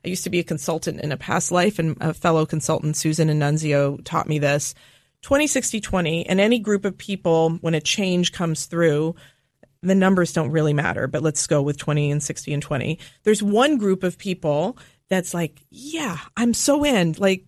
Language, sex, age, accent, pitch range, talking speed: English, female, 30-49, American, 150-205 Hz, 200 wpm